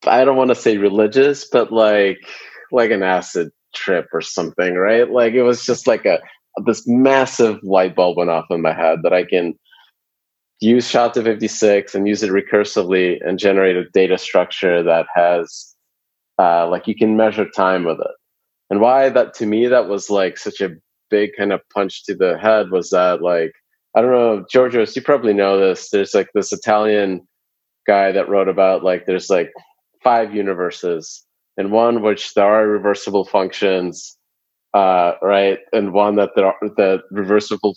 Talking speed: 180 wpm